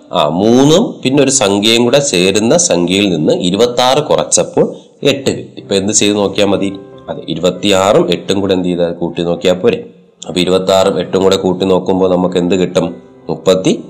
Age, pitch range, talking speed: 30-49, 90-115 Hz, 165 wpm